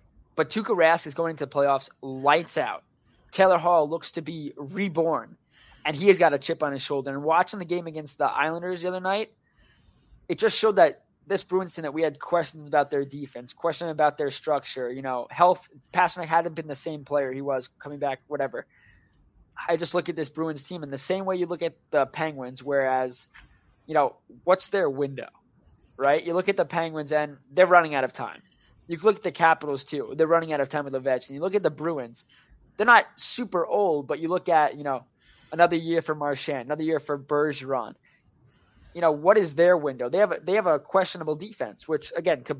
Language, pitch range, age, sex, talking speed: English, 140-170 Hz, 20-39, male, 220 wpm